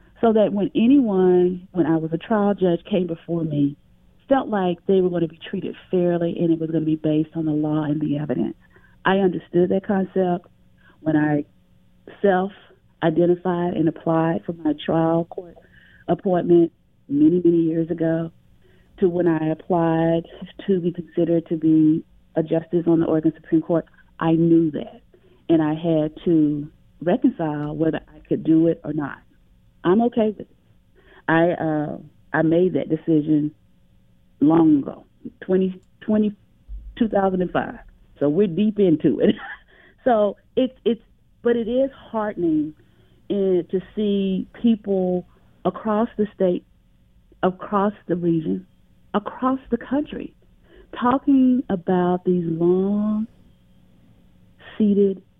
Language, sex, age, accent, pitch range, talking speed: English, female, 40-59, American, 160-200 Hz, 135 wpm